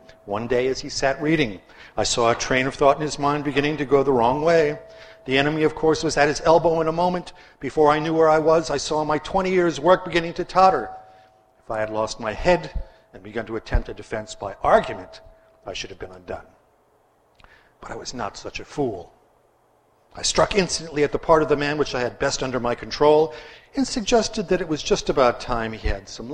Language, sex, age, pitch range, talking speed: English, male, 50-69, 115-160 Hz, 230 wpm